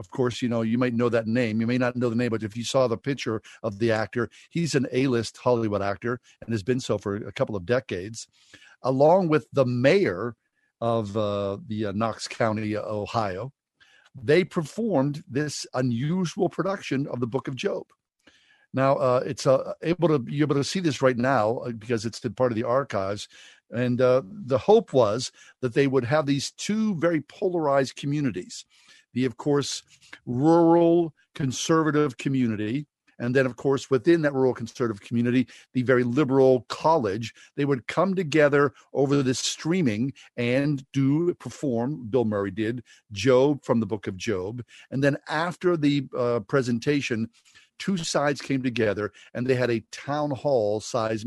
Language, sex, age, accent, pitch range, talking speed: English, male, 50-69, American, 115-145 Hz, 175 wpm